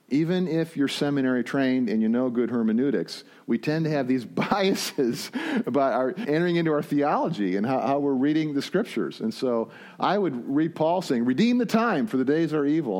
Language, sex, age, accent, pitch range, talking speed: English, male, 50-69, American, 125-165 Hz, 205 wpm